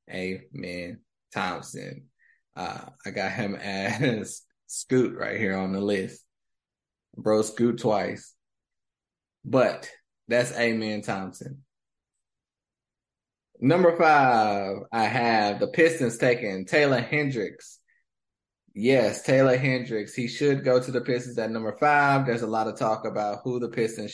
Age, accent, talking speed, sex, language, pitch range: 20-39, American, 125 wpm, male, English, 110-135 Hz